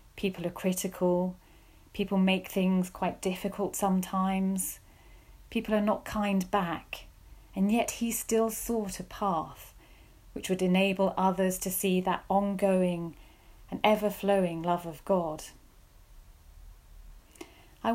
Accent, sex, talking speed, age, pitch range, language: British, female, 115 wpm, 40-59, 155-200 Hz, English